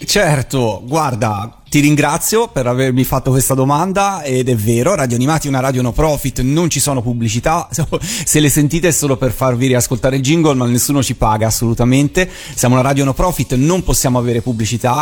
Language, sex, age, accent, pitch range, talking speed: Italian, male, 30-49, native, 120-145 Hz, 190 wpm